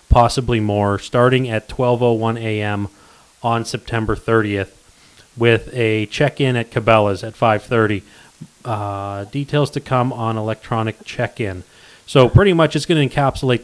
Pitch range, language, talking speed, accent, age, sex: 110-130 Hz, English, 130 wpm, American, 30-49, male